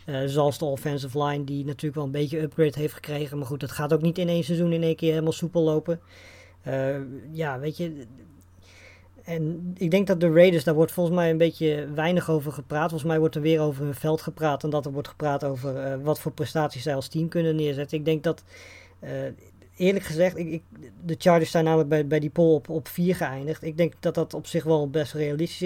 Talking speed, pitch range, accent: 230 wpm, 140-160 Hz, Dutch